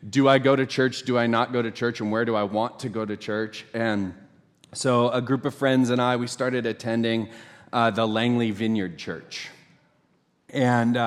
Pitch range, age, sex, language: 110-135 Hz, 30-49, male, English